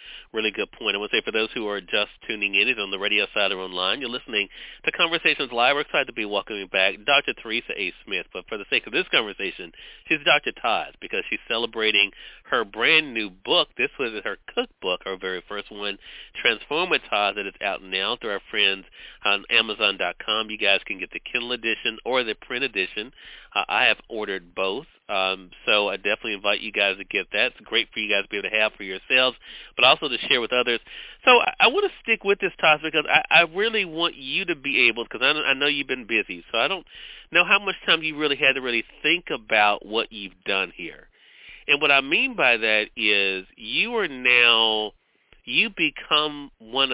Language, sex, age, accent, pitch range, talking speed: English, male, 40-59, American, 105-155 Hz, 220 wpm